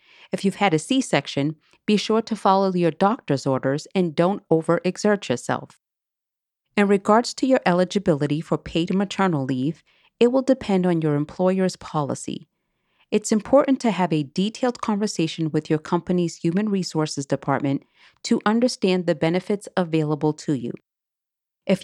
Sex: female